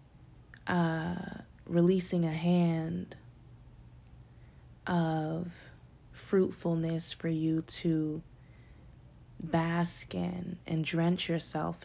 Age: 20-39